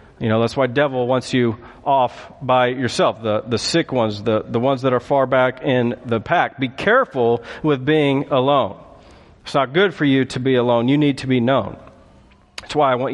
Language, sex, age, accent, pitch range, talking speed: English, male, 40-59, American, 125-150 Hz, 210 wpm